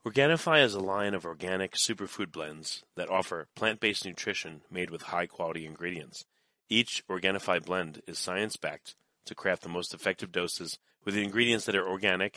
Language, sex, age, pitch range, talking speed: English, male, 30-49, 85-105 Hz, 155 wpm